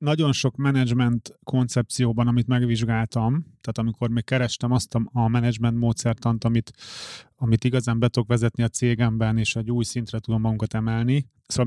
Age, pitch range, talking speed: 30-49, 115-130 Hz, 150 wpm